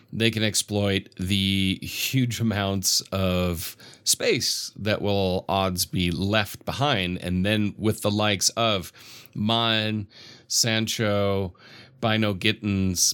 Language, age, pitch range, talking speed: English, 30-49, 95-115 Hz, 110 wpm